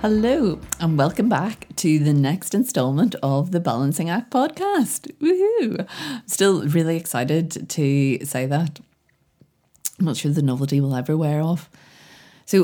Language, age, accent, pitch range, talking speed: English, 20-39, Irish, 140-165 Hz, 145 wpm